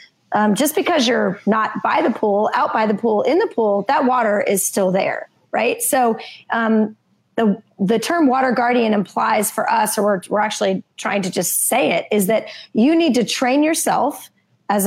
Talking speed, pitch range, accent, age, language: 195 wpm, 205-245 Hz, American, 30-49, English